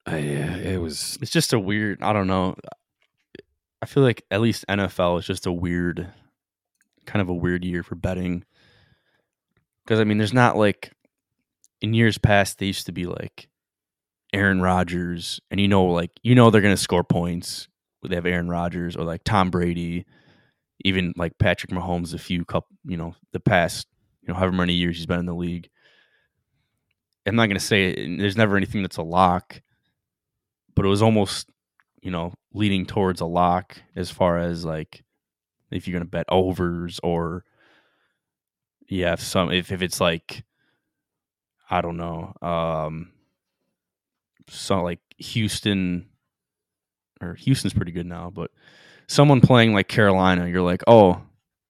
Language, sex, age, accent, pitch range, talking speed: English, male, 20-39, American, 85-100 Hz, 165 wpm